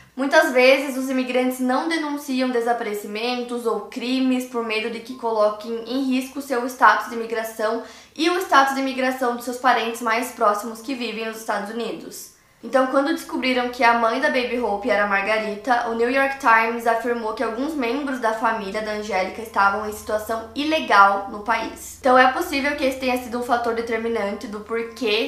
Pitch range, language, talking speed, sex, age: 215-250 Hz, Portuguese, 185 wpm, female, 10-29